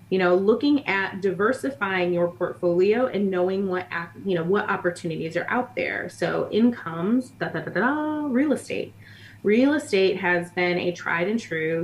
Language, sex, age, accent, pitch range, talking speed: English, female, 20-39, American, 175-200 Hz, 170 wpm